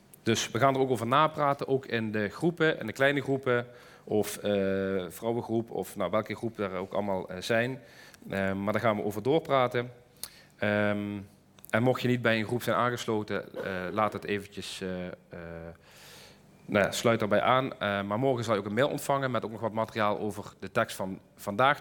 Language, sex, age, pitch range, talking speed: Dutch, male, 40-59, 105-135 Hz, 195 wpm